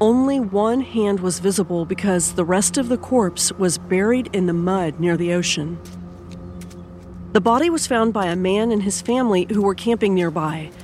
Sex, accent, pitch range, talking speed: female, American, 170-215 Hz, 185 wpm